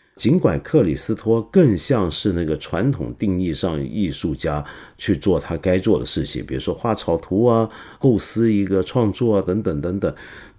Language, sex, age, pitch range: Chinese, male, 50-69, 90-120 Hz